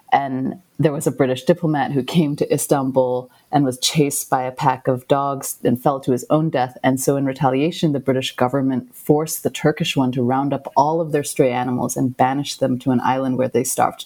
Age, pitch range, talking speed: 30-49, 130-155 Hz, 220 wpm